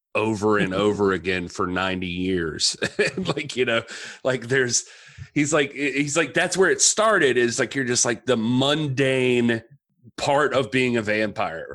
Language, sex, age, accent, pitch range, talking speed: English, male, 30-49, American, 110-145 Hz, 165 wpm